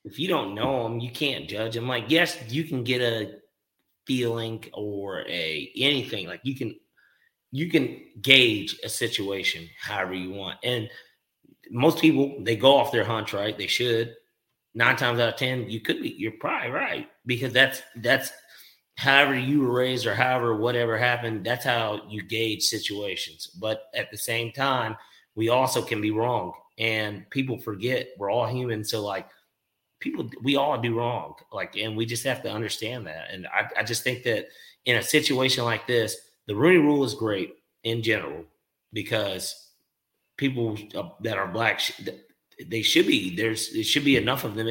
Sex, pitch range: male, 110-130 Hz